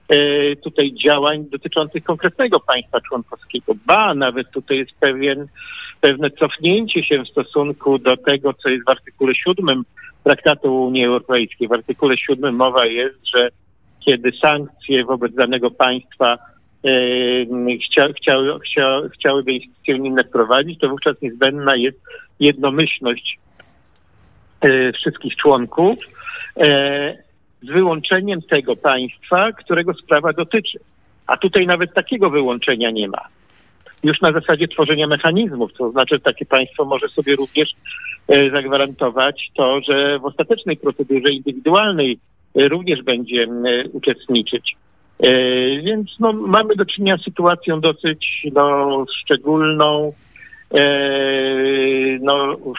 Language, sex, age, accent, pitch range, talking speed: Polish, male, 50-69, native, 130-160 Hz, 115 wpm